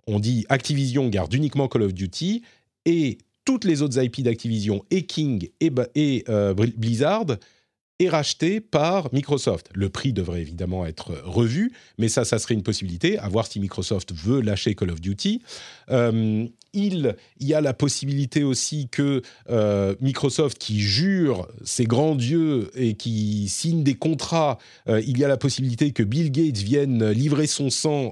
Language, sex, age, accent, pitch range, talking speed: French, male, 40-59, French, 105-150 Hz, 175 wpm